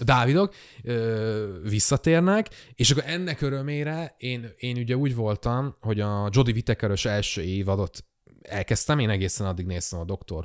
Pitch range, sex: 100-125 Hz, male